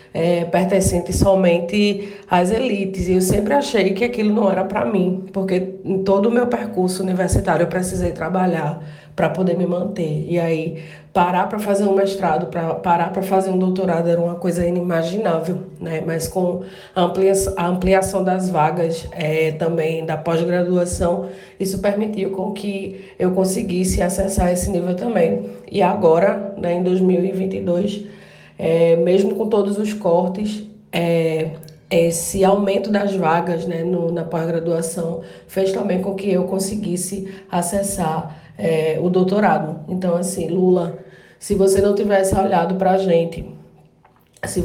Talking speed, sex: 145 wpm, female